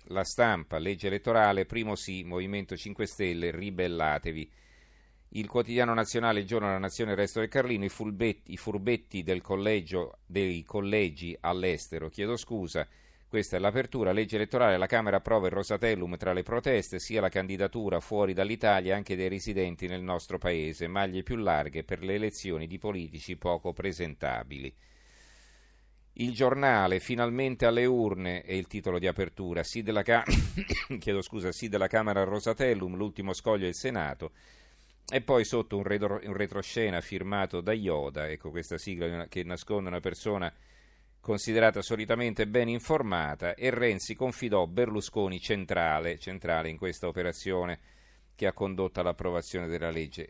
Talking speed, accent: 150 wpm, native